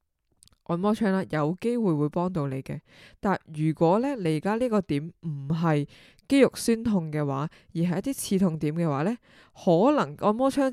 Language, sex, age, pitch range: Chinese, female, 20-39, 155-200 Hz